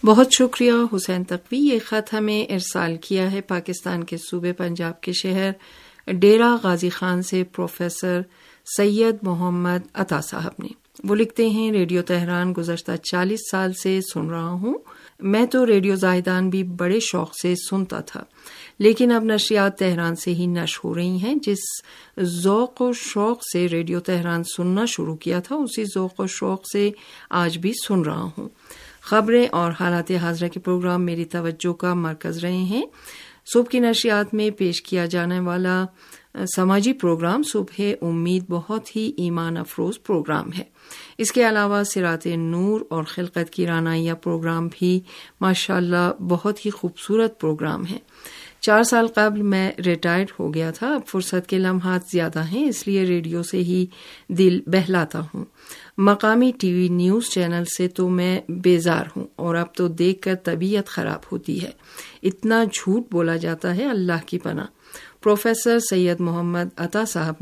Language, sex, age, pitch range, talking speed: Urdu, female, 50-69, 175-210 Hz, 160 wpm